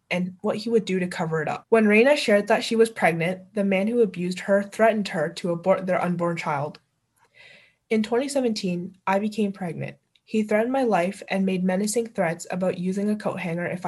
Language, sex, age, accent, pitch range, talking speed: English, female, 20-39, American, 180-220 Hz, 205 wpm